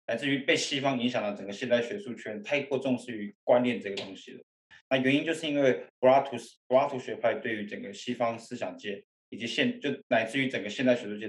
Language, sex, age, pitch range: Chinese, male, 20-39, 115-145 Hz